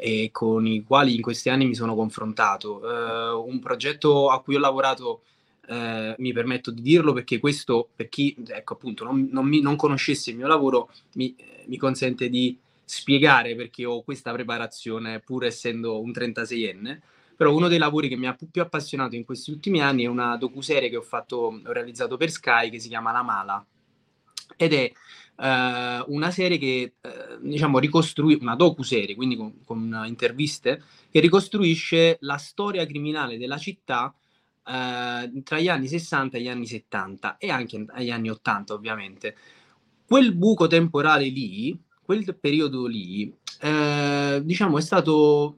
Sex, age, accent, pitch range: male, 20-39, native, 115-150 Hz